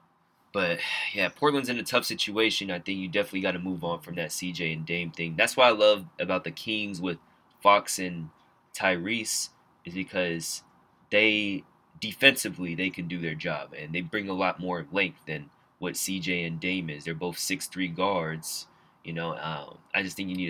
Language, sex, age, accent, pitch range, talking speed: English, male, 20-39, American, 90-105 Hz, 195 wpm